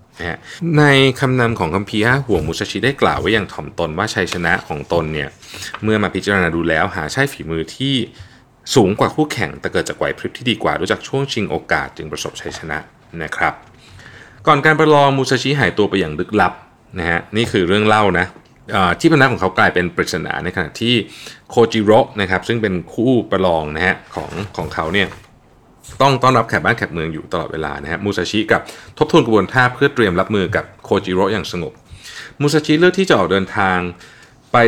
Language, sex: Thai, male